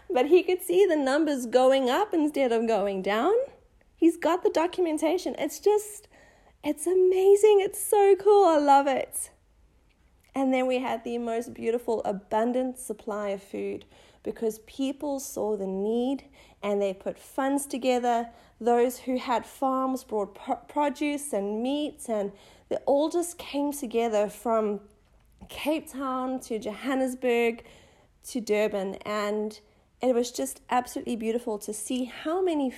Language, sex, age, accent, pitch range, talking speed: English, female, 30-49, Australian, 210-280 Hz, 145 wpm